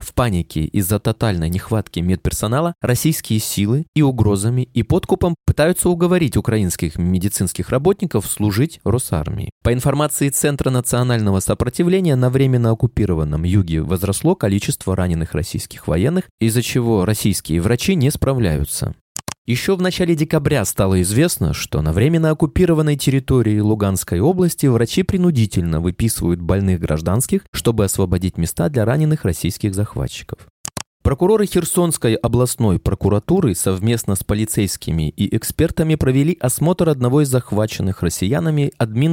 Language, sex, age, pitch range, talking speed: Russian, male, 20-39, 100-145 Hz, 120 wpm